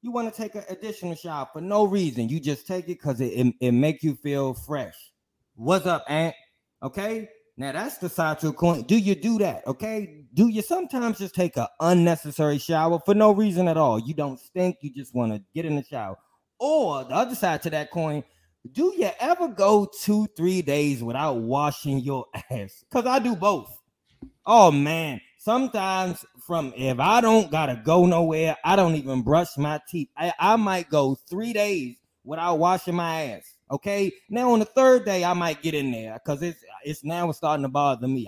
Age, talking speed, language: 20-39, 200 wpm, English